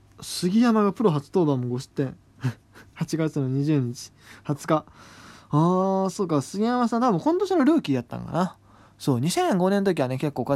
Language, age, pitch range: Japanese, 20-39, 115-160 Hz